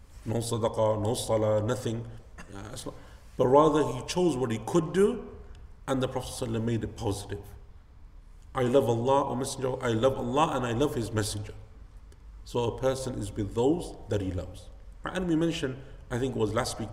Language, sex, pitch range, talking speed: English, male, 105-130 Hz, 180 wpm